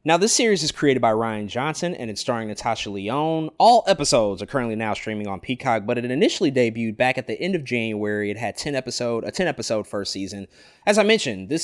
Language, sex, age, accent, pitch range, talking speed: English, male, 20-39, American, 110-155 Hz, 225 wpm